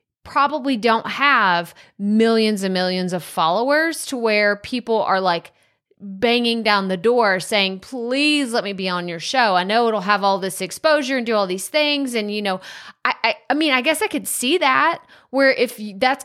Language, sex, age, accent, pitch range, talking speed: English, female, 30-49, American, 195-275 Hz, 195 wpm